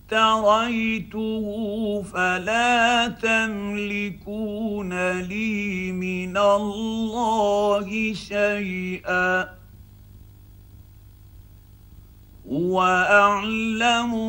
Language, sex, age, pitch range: Arabic, male, 50-69, 155-210 Hz